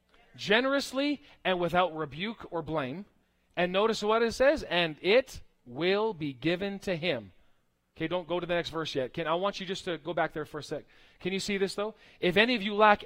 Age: 40-59